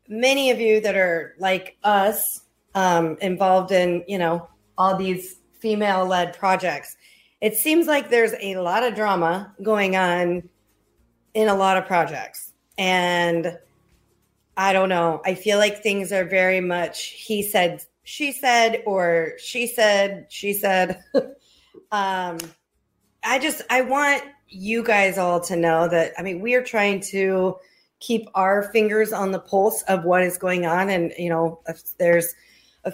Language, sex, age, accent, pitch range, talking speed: English, female, 40-59, American, 175-210 Hz, 155 wpm